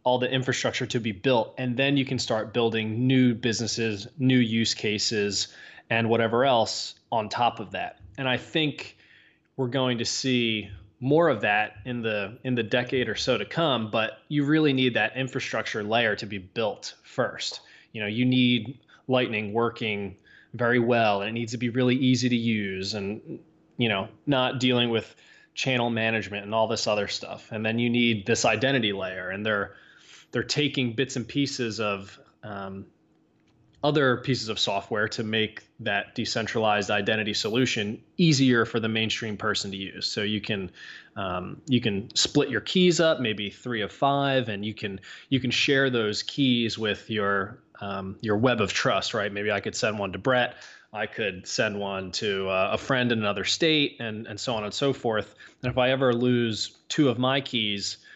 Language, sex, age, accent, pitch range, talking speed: English, male, 20-39, American, 105-130 Hz, 185 wpm